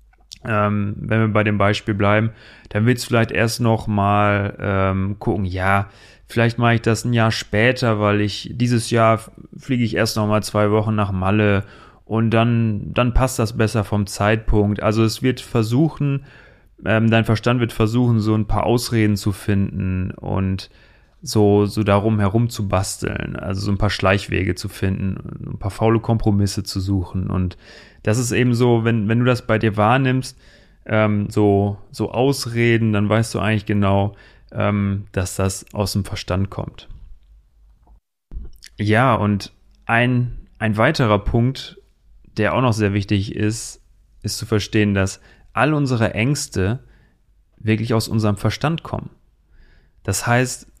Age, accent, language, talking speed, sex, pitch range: 30-49, German, German, 155 wpm, male, 100-115 Hz